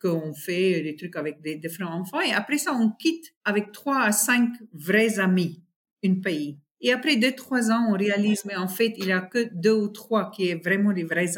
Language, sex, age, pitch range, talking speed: French, female, 50-69, 175-245 Hz, 225 wpm